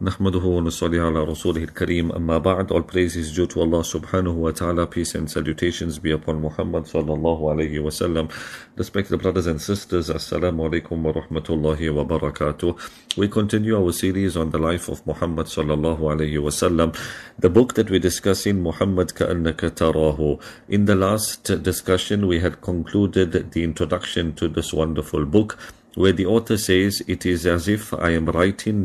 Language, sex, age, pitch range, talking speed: English, male, 50-69, 80-95 Hz, 170 wpm